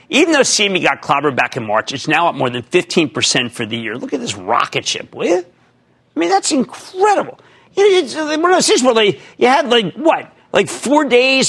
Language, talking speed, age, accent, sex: English, 195 wpm, 50-69, American, male